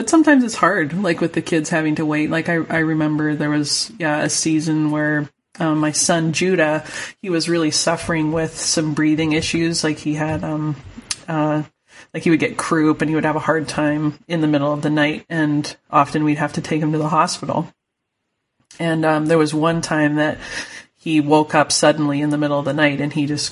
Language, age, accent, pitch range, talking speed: English, 30-49, American, 145-160 Hz, 220 wpm